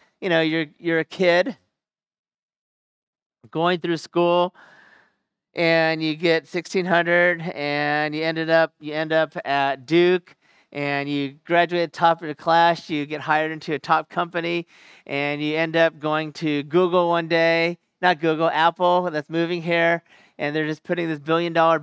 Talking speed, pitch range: 160 wpm, 160-185 Hz